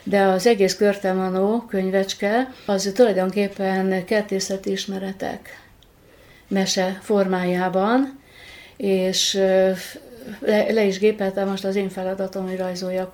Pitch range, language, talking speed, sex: 185-205 Hz, Hungarian, 100 wpm, female